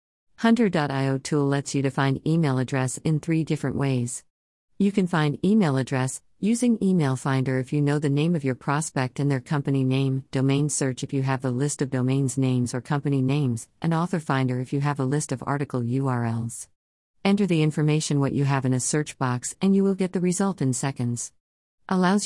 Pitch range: 130-160 Hz